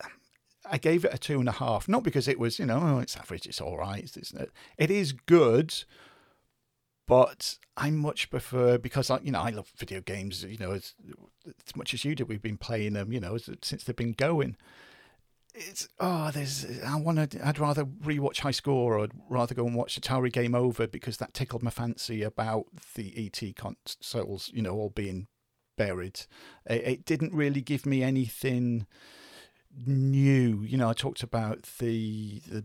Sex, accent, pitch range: male, British, 110-135 Hz